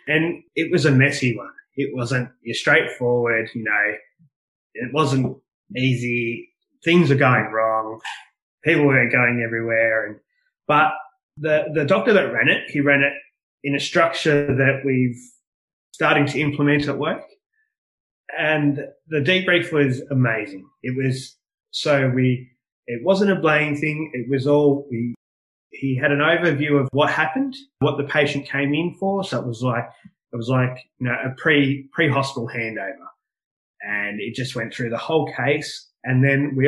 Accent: Australian